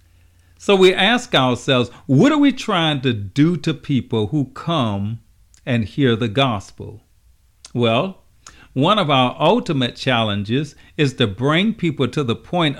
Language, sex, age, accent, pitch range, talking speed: English, male, 50-69, American, 105-155 Hz, 145 wpm